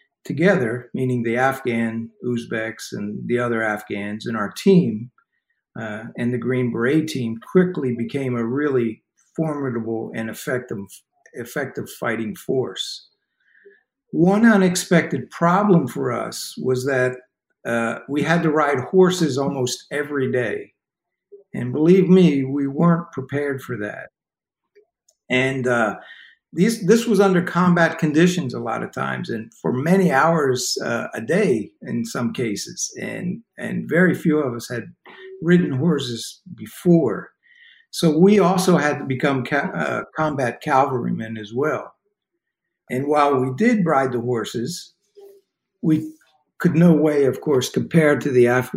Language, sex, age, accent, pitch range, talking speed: English, male, 50-69, American, 125-180 Hz, 135 wpm